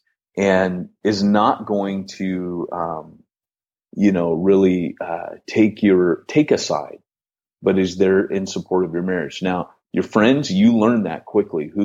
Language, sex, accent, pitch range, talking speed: English, male, American, 90-110 Hz, 155 wpm